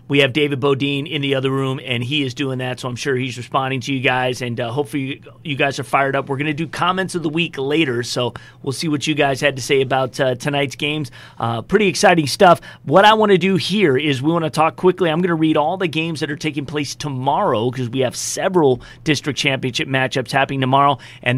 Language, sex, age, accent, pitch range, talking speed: English, male, 30-49, American, 135-175 Hz, 255 wpm